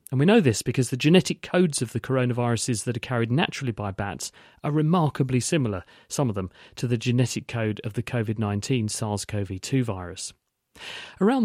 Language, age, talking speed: English, 40-59, 175 wpm